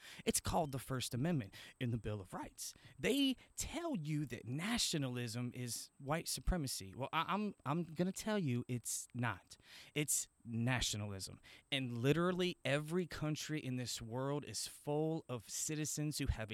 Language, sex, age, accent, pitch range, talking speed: English, male, 20-39, American, 120-175 Hz, 150 wpm